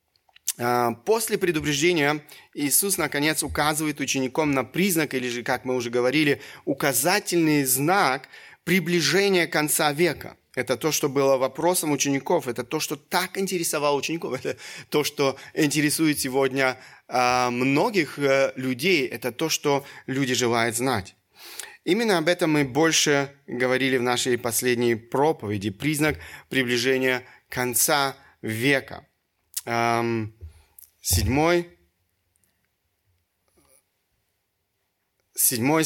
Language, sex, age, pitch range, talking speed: Russian, male, 30-49, 125-160 Hz, 100 wpm